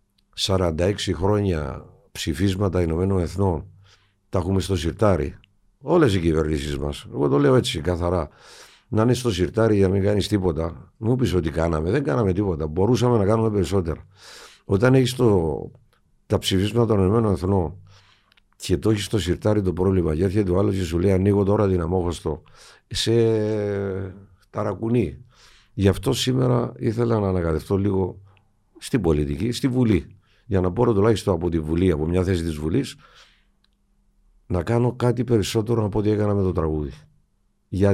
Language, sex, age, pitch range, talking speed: Greek, male, 50-69, 85-110 Hz, 155 wpm